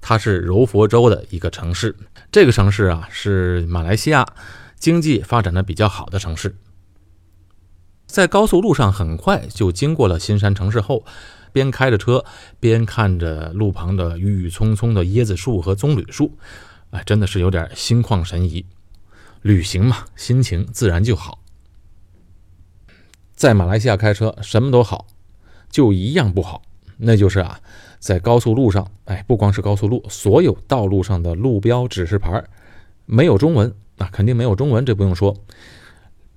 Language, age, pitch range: Chinese, 30-49, 90-115 Hz